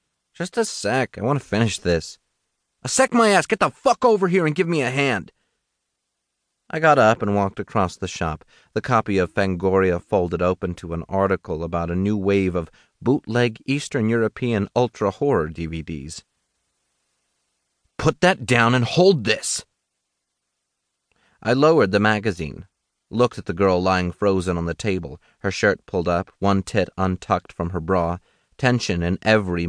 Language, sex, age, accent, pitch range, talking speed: English, male, 30-49, American, 90-140 Hz, 165 wpm